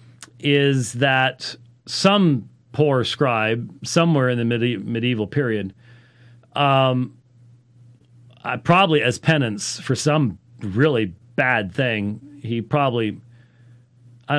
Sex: male